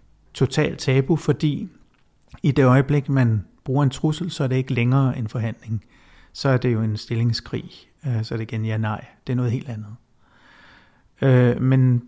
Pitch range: 120-140 Hz